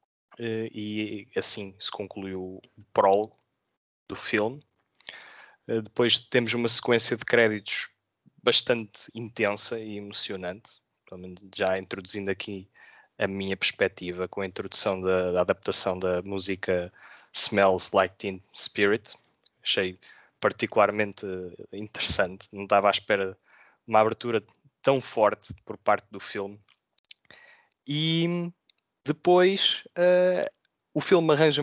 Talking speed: 110 wpm